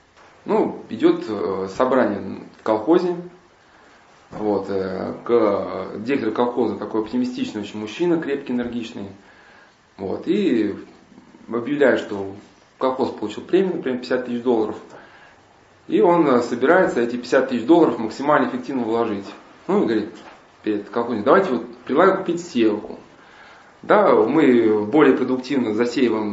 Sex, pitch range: male, 115-185 Hz